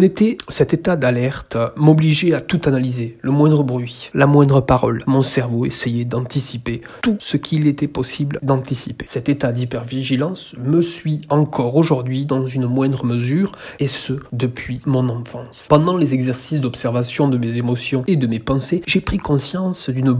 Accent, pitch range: French, 125-155 Hz